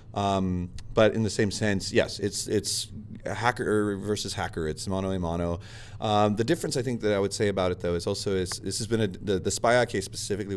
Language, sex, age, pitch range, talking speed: English, male, 30-49, 90-110 Hz, 225 wpm